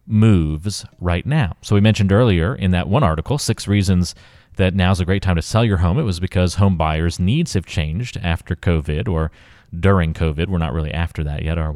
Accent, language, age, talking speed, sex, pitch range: American, English, 30-49, 215 wpm, male, 85-110 Hz